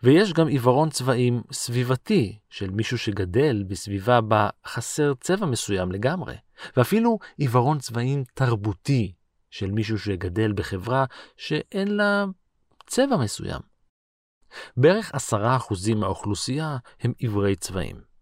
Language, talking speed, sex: Hebrew, 105 wpm, male